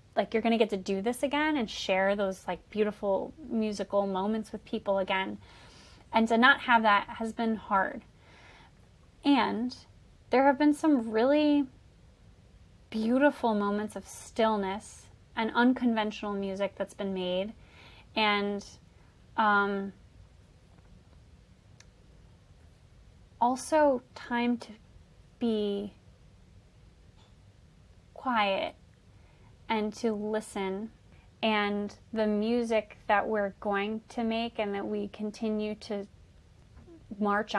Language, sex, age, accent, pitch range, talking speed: English, female, 20-39, American, 190-225 Hz, 105 wpm